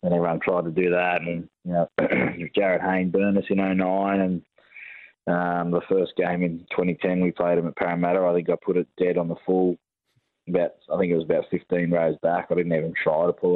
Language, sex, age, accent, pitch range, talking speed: English, male, 20-39, Australian, 85-95 Hz, 215 wpm